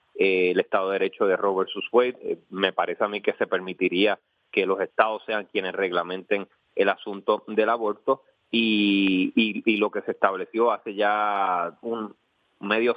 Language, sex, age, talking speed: Spanish, male, 30-49, 160 wpm